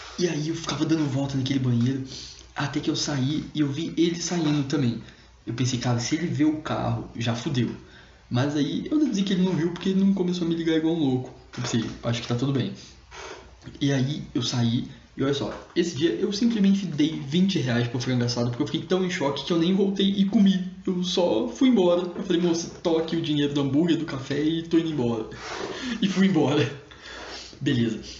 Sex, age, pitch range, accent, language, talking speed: male, 20-39, 125-165 Hz, Brazilian, Portuguese, 220 wpm